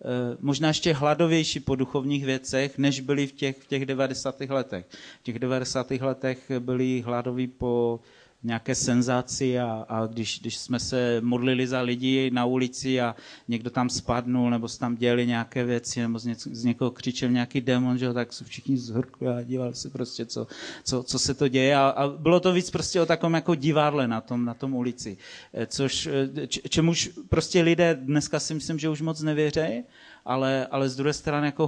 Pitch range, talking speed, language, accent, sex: 125-145 Hz, 190 wpm, Czech, native, male